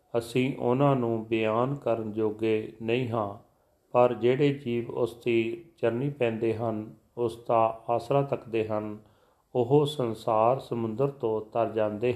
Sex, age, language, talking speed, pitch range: male, 40-59, Punjabi, 135 wpm, 115-135 Hz